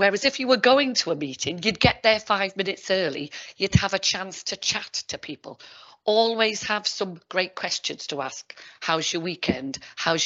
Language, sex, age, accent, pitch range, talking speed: English, female, 40-59, British, 165-215 Hz, 195 wpm